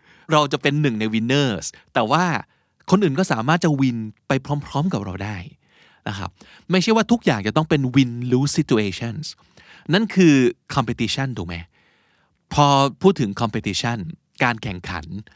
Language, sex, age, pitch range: Thai, male, 20-39, 110-150 Hz